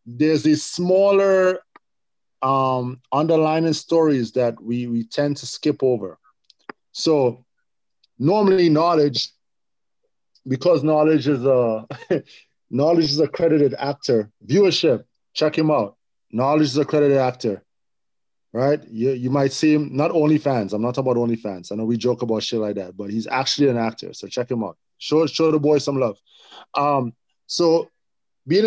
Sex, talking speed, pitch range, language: male, 155 wpm, 130-160 Hz, English